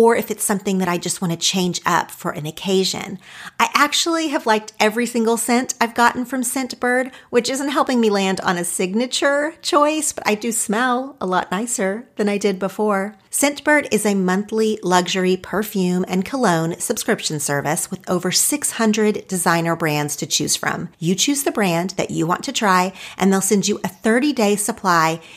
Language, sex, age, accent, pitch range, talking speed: English, female, 40-59, American, 185-235 Hz, 185 wpm